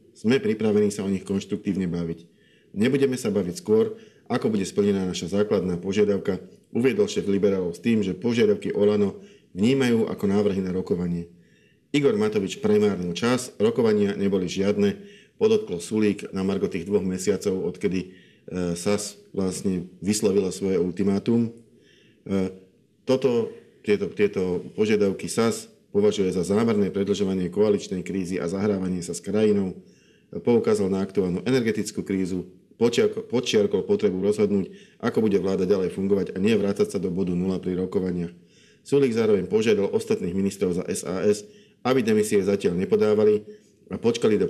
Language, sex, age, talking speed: Slovak, male, 50-69, 135 wpm